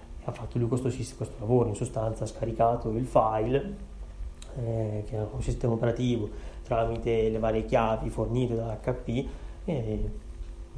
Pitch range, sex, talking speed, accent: 110-125 Hz, male, 145 wpm, native